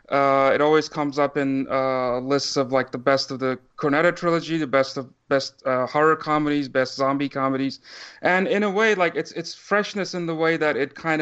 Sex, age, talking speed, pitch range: male, 30-49, 215 wpm, 135-150 Hz